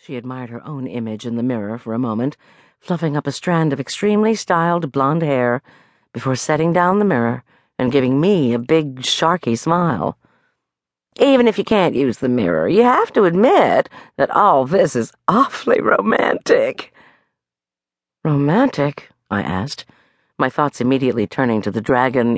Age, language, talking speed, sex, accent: 50-69, English, 160 wpm, female, American